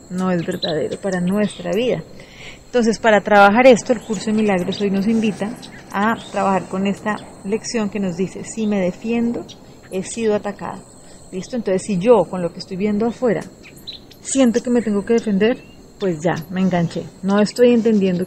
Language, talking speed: Spanish, 175 wpm